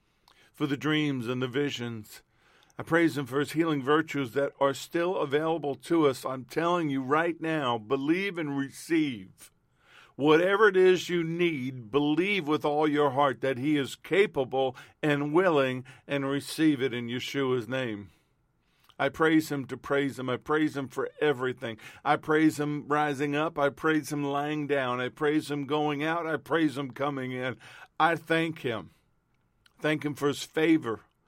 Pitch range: 130-155 Hz